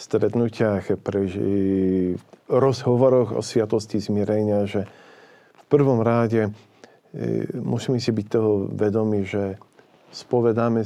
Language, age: Slovak, 50-69